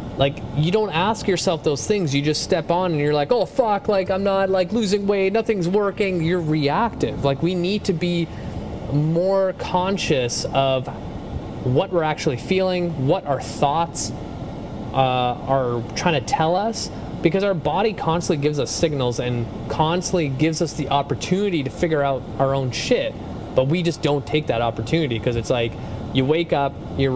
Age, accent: 20-39, American